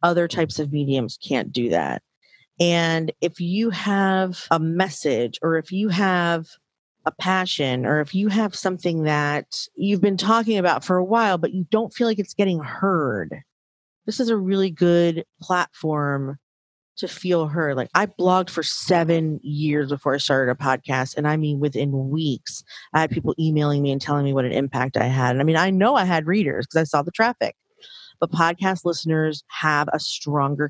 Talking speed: 190 wpm